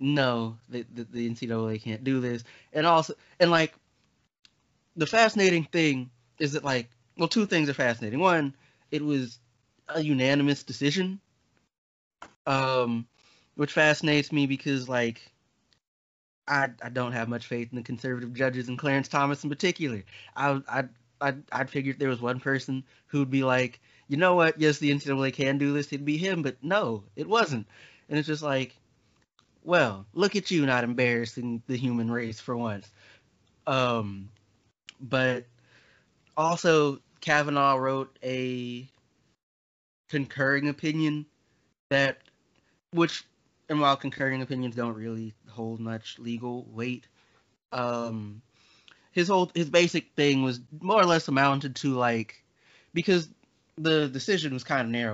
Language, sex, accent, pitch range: English, male, American, 115-145 Hz